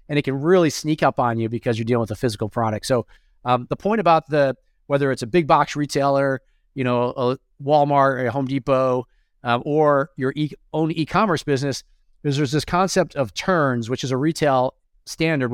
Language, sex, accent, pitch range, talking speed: English, male, American, 130-155 Hz, 205 wpm